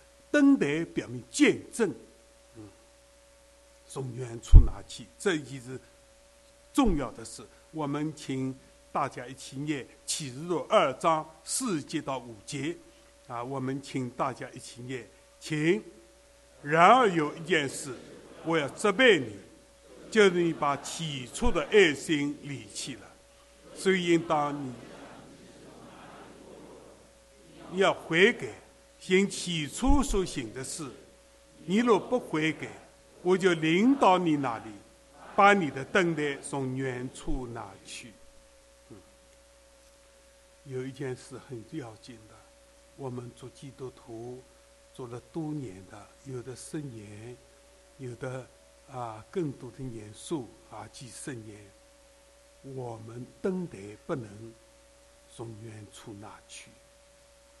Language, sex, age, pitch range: English, male, 60-79, 125-185 Hz